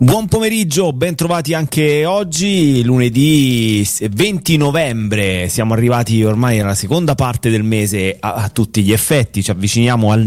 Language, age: Italian, 30-49